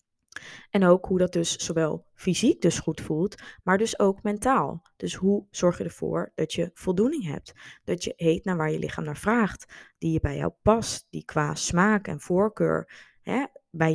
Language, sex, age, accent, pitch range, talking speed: Dutch, female, 20-39, Dutch, 165-195 Hz, 185 wpm